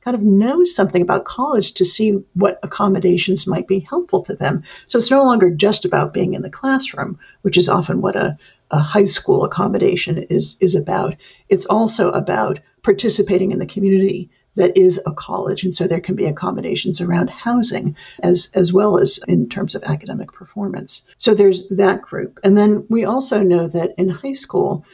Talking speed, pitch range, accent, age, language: 190 wpm, 185-210 Hz, American, 50-69, English